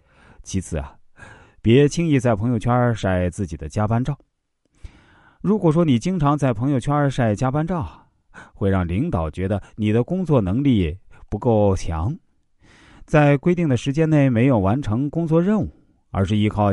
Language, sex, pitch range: Chinese, male, 85-120 Hz